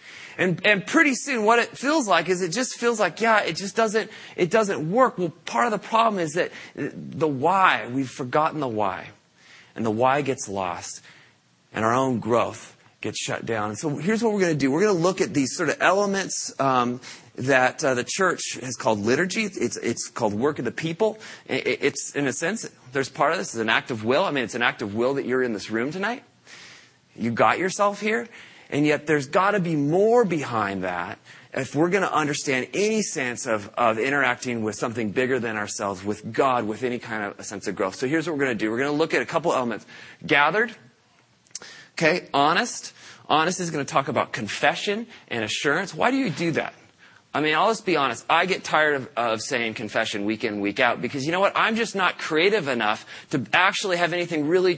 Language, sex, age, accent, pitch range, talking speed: English, male, 30-49, American, 120-195 Hz, 225 wpm